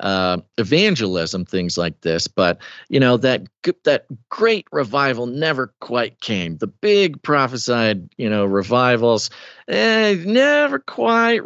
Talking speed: 125 wpm